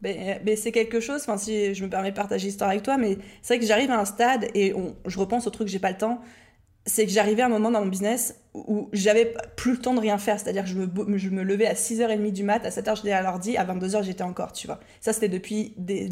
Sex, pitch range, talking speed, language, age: female, 195-230 Hz, 285 wpm, French, 20-39